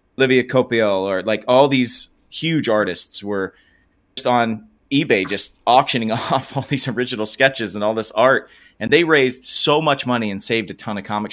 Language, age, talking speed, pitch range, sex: English, 30-49, 185 wpm, 95-115 Hz, male